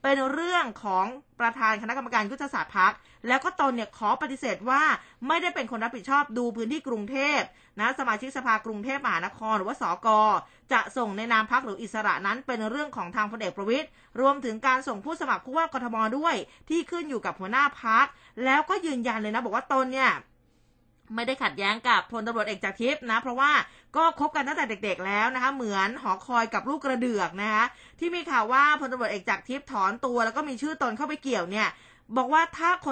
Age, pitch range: 20-39, 225-280 Hz